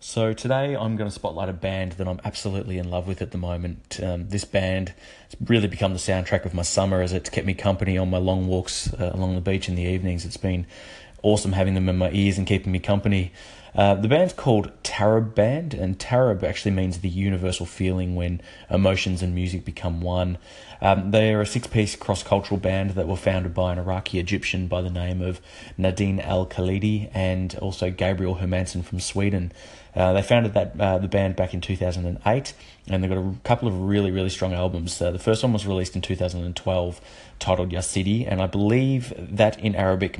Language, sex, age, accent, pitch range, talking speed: English, male, 30-49, Australian, 90-105 Hz, 200 wpm